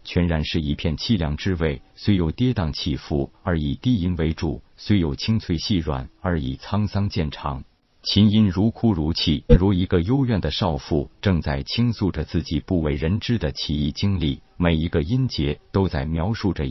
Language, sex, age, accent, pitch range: Chinese, male, 50-69, native, 75-100 Hz